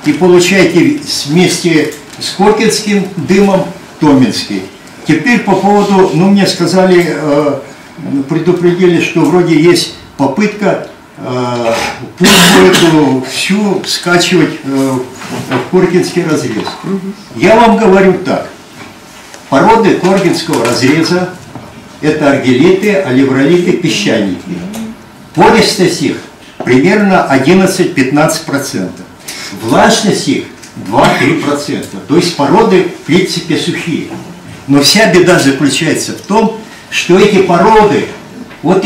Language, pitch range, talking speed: Russian, 150-195 Hz, 95 wpm